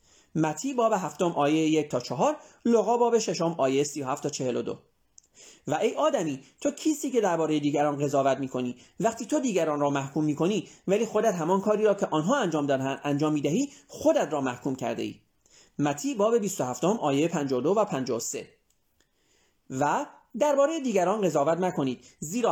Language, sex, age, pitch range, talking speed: Persian, male, 30-49, 150-235 Hz, 145 wpm